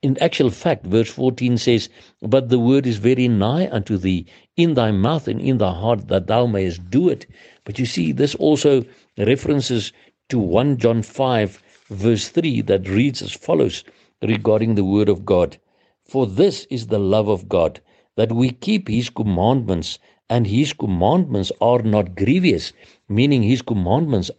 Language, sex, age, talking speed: English, male, 60-79, 165 wpm